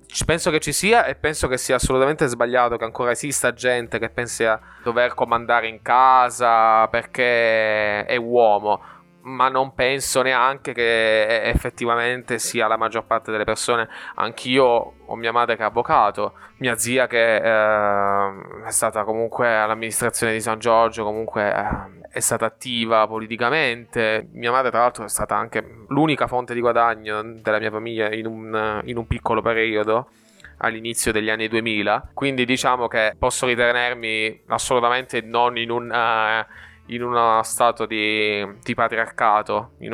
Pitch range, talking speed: 110-125 Hz, 150 wpm